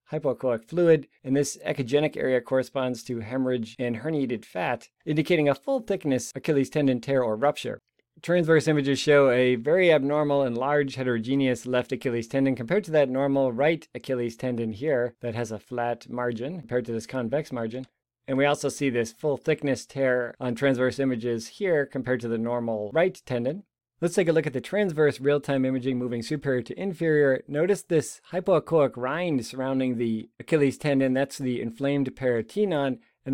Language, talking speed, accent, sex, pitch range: English, 170 wpm, American, male, 120-145 Hz